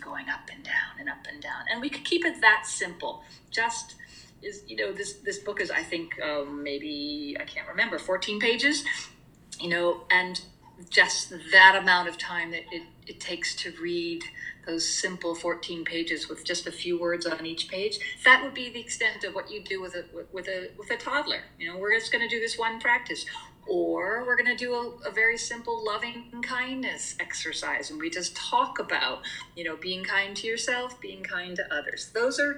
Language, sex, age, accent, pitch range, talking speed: English, female, 40-59, American, 175-260 Hz, 210 wpm